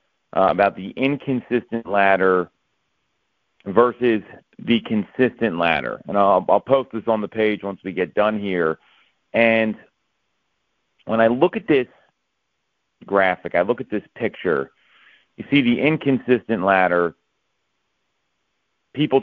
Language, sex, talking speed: English, male, 125 wpm